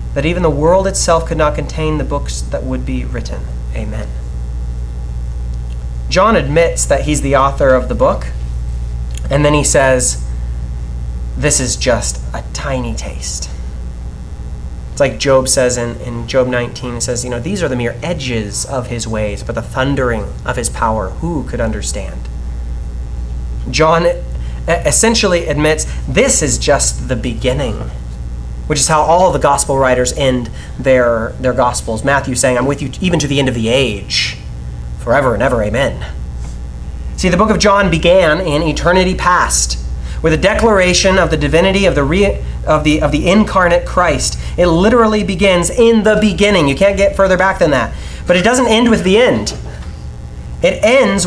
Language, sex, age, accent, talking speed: English, male, 30-49, American, 170 wpm